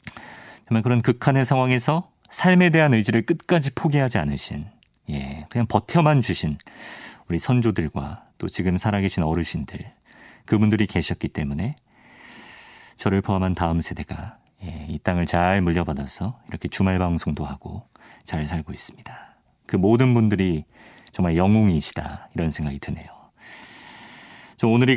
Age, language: 40-59, Korean